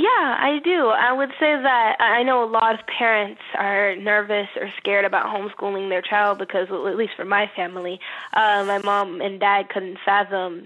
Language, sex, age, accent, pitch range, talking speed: English, female, 10-29, American, 190-225 Hz, 190 wpm